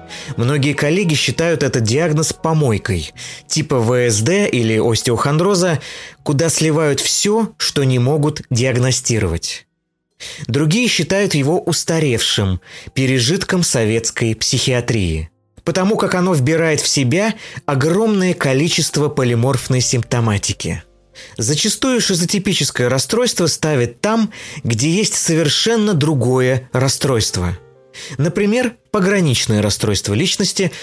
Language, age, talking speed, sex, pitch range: Russian, 20-39, 95 wpm, male, 120-180 Hz